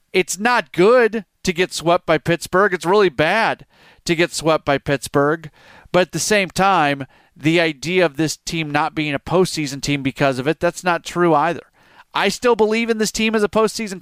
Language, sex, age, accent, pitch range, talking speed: English, male, 40-59, American, 155-185 Hz, 200 wpm